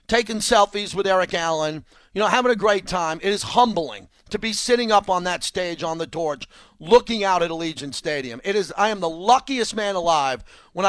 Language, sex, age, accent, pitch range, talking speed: English, male, 40-59, American, 170-225 Hz, 210 wpm